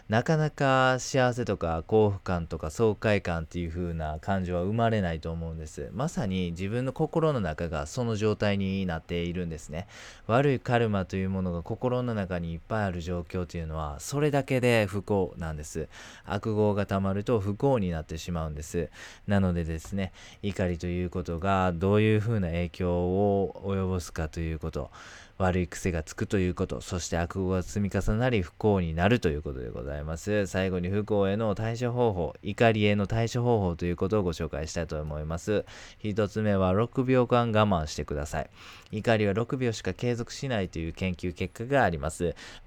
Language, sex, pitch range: Japanese, male, 85-110 Hz